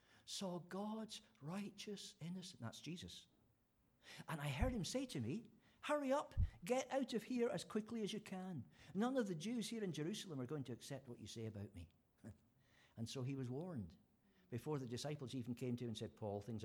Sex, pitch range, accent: male, 100-145 Hz, British